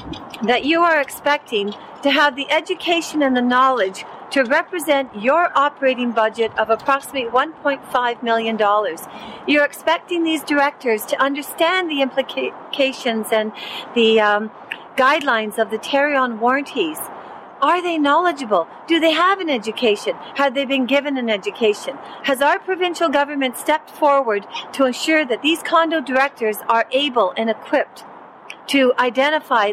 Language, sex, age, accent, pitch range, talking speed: English, female, 50-69, American, 220-290 Hz, 135 wpm